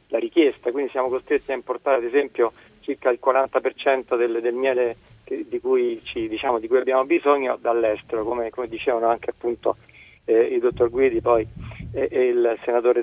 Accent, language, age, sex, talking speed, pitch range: native, Italian, 30-49, male, 175 wpm, 125-195 Hz